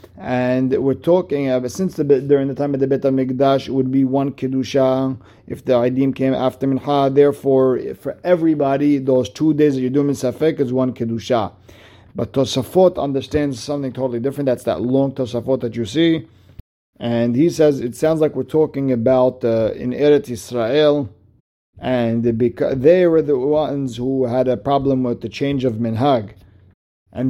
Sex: male